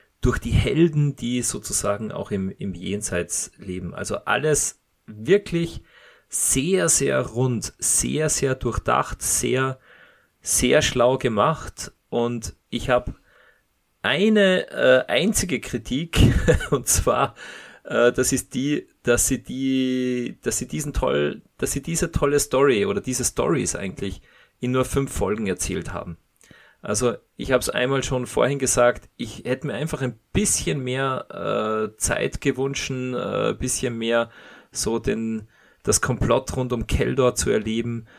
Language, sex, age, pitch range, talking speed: German, male, 30-49, 105-130 Hz, 135 wpm